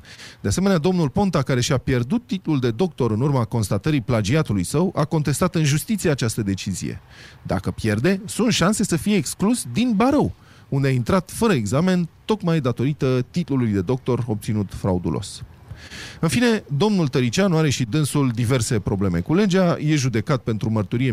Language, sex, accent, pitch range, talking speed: Romanian, male, native, 115-175 Hz, 160 wpm